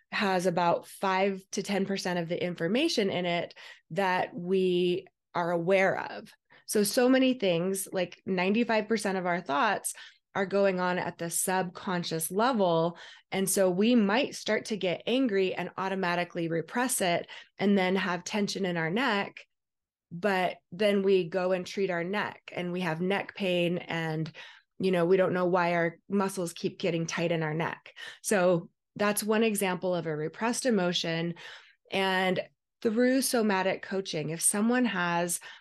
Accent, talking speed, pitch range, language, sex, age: American, 155 wpm, 175-205 Hz, English, female, 20-39